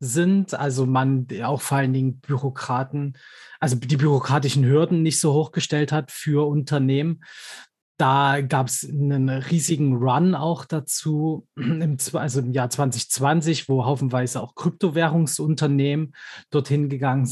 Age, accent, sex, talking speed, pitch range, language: 20-39, German, male, 125 wpm, 130-155 Hz, German